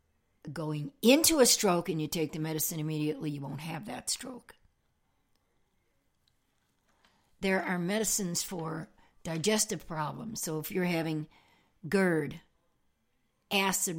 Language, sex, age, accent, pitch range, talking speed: English, female, 60-79, American, 155-185 Hz, 115 wpm